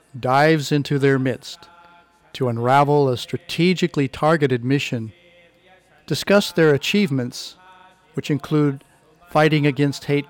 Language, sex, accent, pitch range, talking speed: English, male, American, 130-170 Hz, 105 wpm